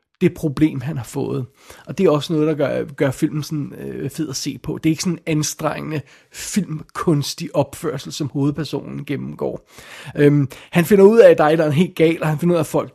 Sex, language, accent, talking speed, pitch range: male, Danish, native, 220 wpm, 145-170 Hz